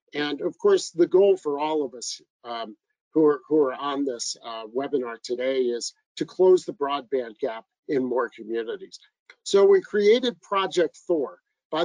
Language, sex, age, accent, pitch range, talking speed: English, male, 50-69, American, 145-200 Hz, 165 wpm